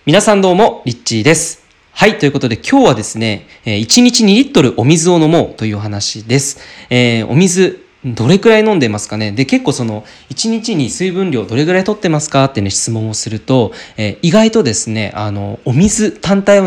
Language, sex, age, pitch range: Japanese, male, 20-39, 115-175 Hz